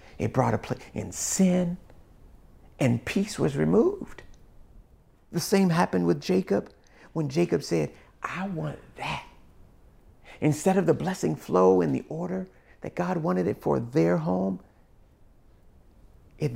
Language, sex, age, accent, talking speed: English, male, 50-69, American, 135 wpm